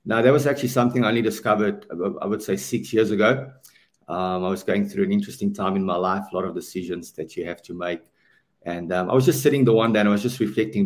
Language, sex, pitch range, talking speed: English, male, 95-120 Hz, 265 wpm